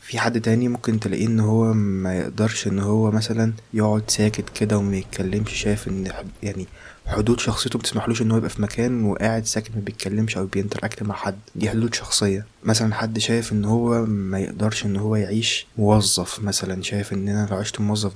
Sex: male